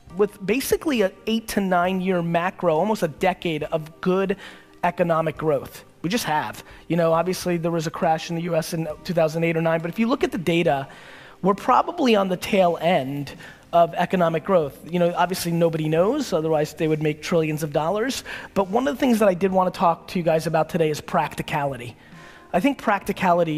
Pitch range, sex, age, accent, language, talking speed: 160-185 Hz, male, 30-49, American, English, 205 wpm